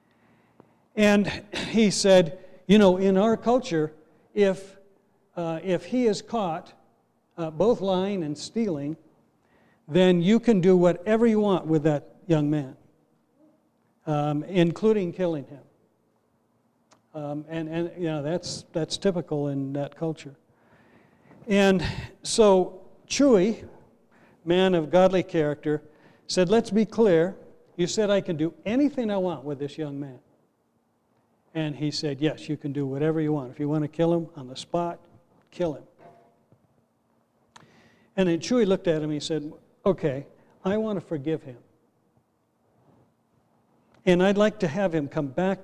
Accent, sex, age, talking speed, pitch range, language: American, male, 60-79, 145 wpm, 150-195 Hz, English